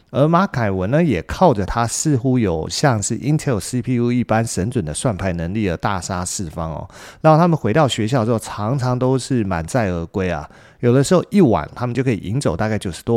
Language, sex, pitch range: Chinese, male, 95-135 Hz